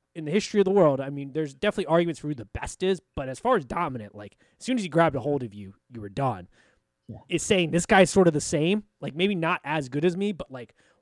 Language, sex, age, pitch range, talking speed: English, male, 20-39, 120-180 Hz, 280 wpm